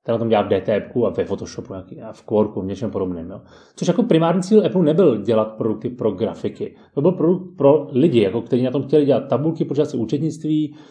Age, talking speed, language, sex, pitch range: 30-49, 220 wpm, Czech, male, 125-165 Hz